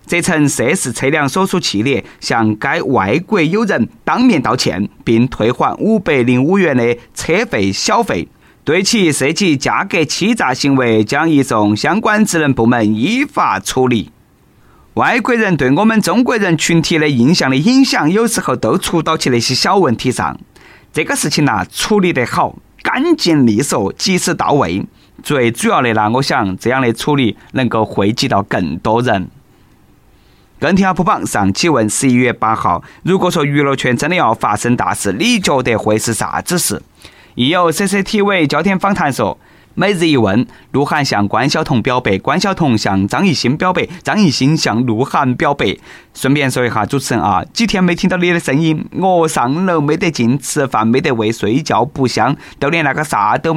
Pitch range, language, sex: 120-180 Hz, Chinese, male